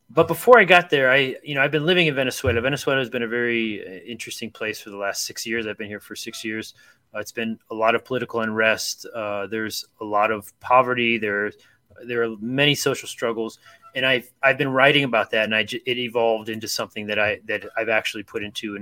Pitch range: 110-140 Hz